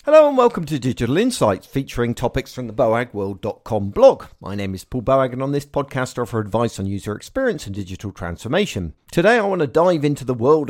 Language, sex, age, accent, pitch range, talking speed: English, male, 50-69, British, 105-145 Hz, 215 wpm